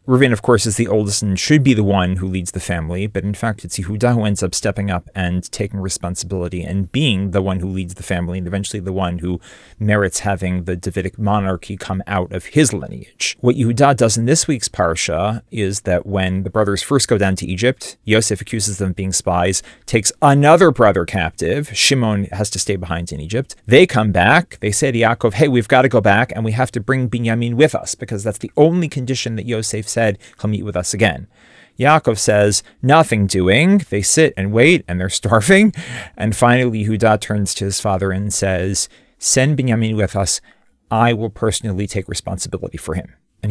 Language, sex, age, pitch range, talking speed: English, male, 30-49, 95-120 Hz, 210 wpm